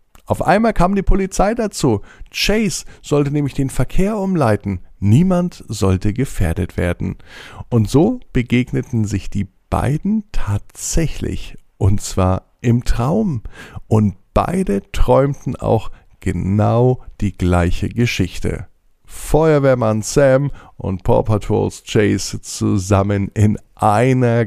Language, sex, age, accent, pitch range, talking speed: German, male, 50-69, German, 90-120 Hz, 110 wpm